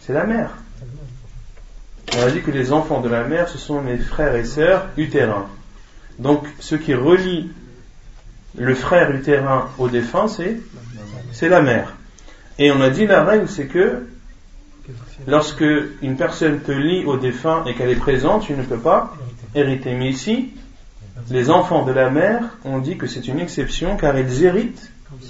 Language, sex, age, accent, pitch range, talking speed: French, male, 30-49, French, 125-165 Hz, 170 wpm